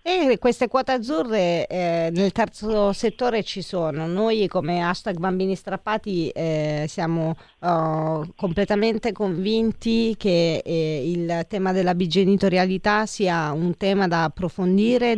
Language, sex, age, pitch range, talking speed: Italian, female, 40-59, 175-220 Hz, 125 wpm